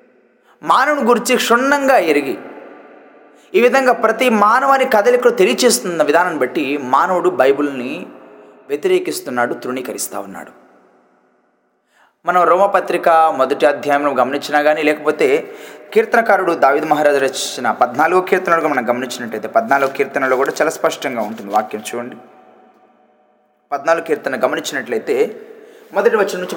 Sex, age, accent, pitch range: male, 20-39, native, 165-275 Hz